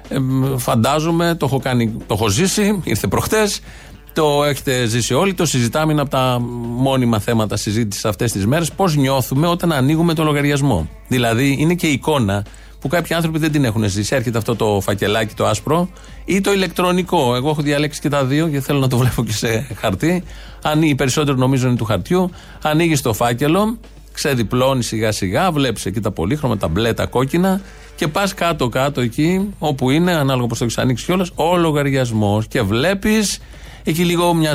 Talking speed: 170 wpm